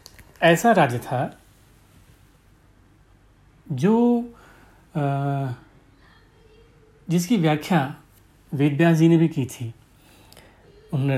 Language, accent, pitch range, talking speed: Hindi, native, 135-180 Hz, 75 wpm